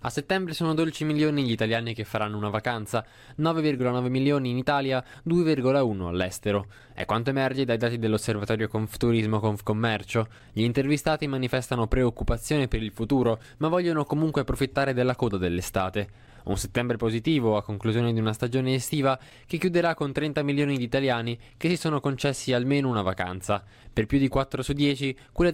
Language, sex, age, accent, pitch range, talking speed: Italian, male, 20-39, native, 110-140 Hz, 165 wpm